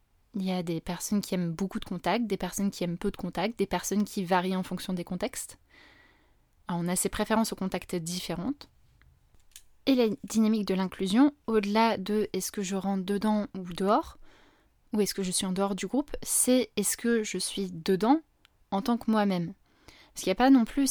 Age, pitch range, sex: 20-39, 190-230 Hz, female